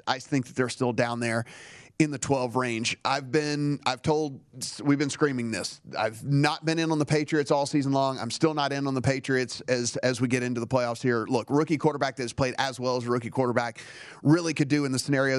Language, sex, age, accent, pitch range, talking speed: English, male, 30-49, American, 120-145 Hz, 240 wpm